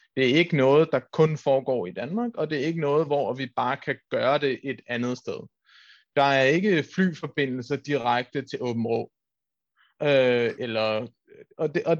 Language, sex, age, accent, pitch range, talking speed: Danish, male, 30-49, native, 135-175 Hz, 160 wpm